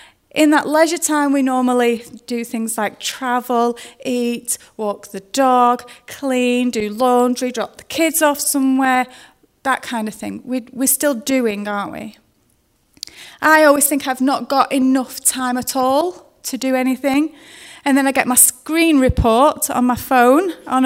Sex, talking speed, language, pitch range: female, 160 wpm, English, 235-280 Hz